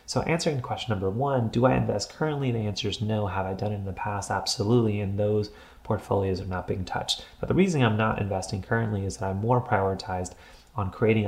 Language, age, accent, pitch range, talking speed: English, 30-49, American, 95-115 Hz, 225 wpm